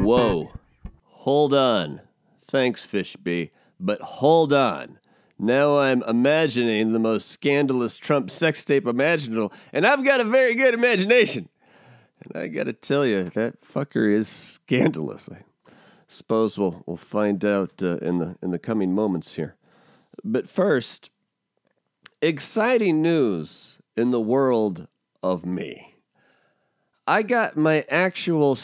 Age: 40-59